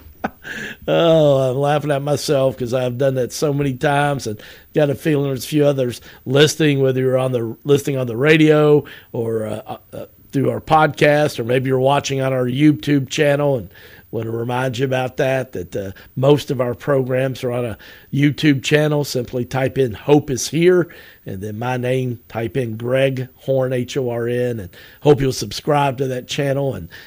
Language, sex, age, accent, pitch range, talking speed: English, male, 50-69, American, 115-145 Hz, 185 wpm